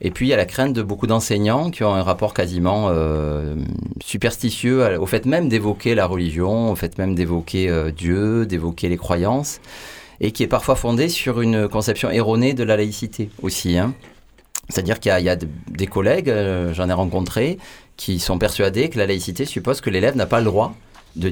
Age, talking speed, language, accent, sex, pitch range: 30-49, 205 wpm, French, French, male, 90-110 Hz